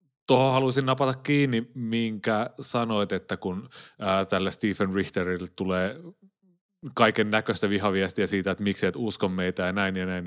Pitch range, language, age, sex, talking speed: 95-120 Hz, Finnish, 30-49, male, 145 wpm